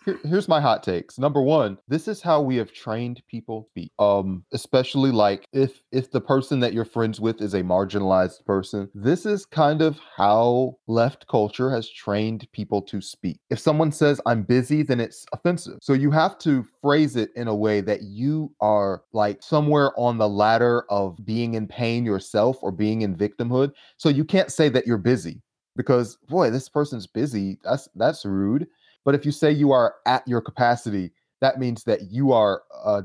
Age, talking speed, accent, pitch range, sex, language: 30-49, 190 wpm, American, 110-145 Hz, male, English